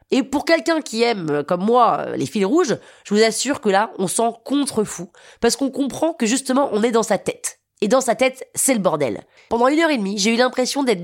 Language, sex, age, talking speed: French, female, 20-39, 240 wpm